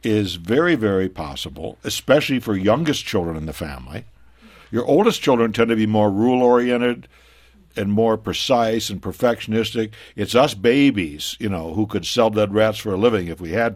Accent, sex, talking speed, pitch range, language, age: American, male, 175 wpm, 100-130 Hz, English, 60-79